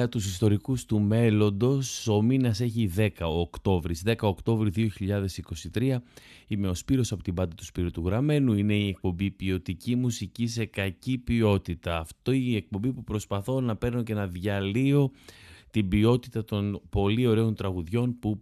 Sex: male